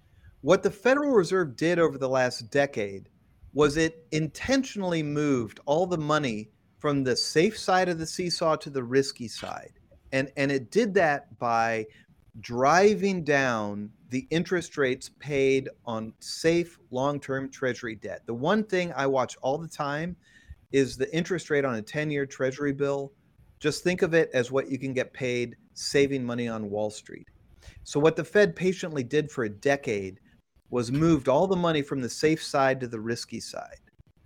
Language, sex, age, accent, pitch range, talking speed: English, male, 40-59, American, 125-165 Hz, 175 wpm